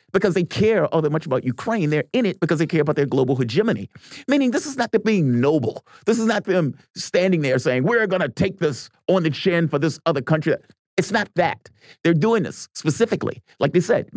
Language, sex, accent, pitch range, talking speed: English, male, American, 130-190 Hz, 225 wpm